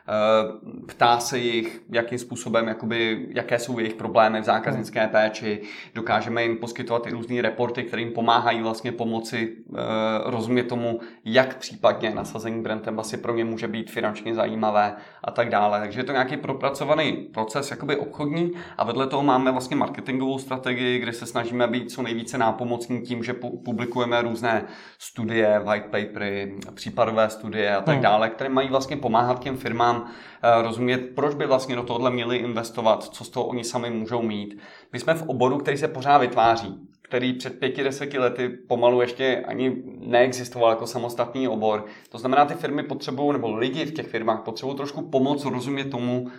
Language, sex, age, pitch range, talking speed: Czech, male, 30-49, 115-130 Hz, 170 wpm